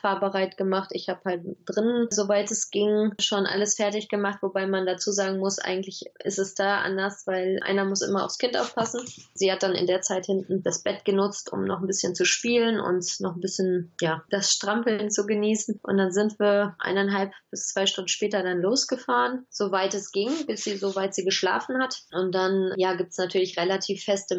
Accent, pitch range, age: German, 185-205 Hz, 20-39